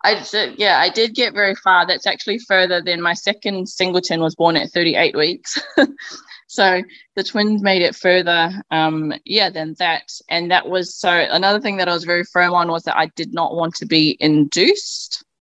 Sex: female